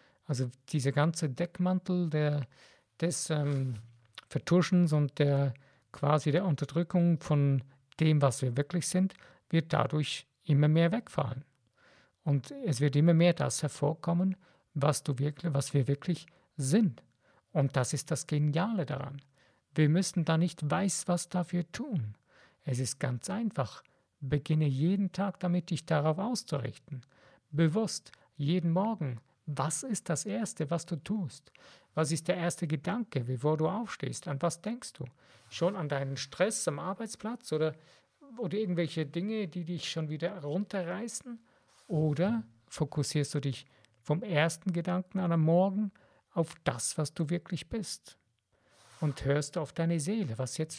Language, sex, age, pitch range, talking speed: German, male, 50-69, 140-180 Hz, 145 wpm